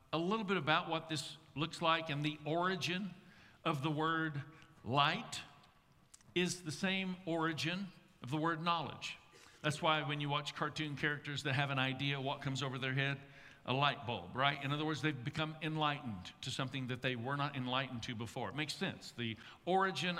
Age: 50-69